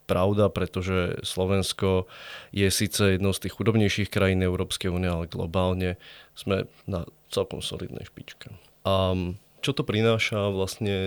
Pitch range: 95-115 Hz